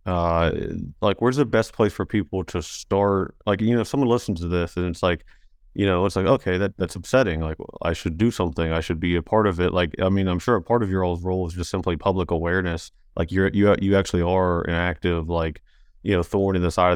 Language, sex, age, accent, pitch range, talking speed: English, male, 30-49, American, 85-95 Hz, 250 wpm